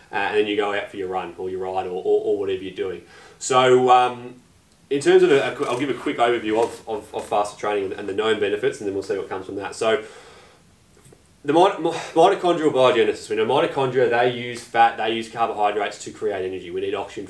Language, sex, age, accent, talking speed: English, male, 20-39, Australian, 240 wpm